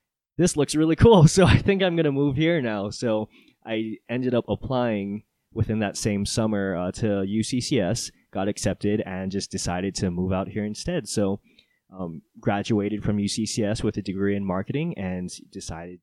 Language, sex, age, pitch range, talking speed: English, male, 20-39, 90-110 Hz, 175 wpm